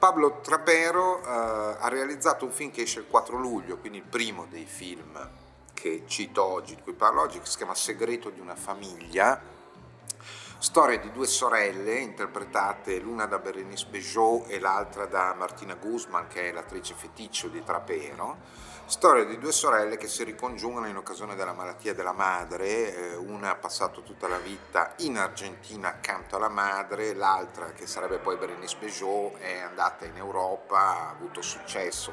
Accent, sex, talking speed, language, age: native, male, 165 wpm, Italian, 30-49